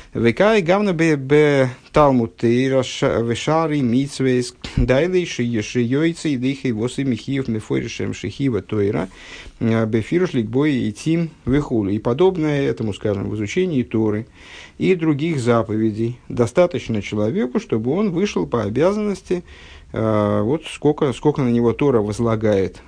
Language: Russian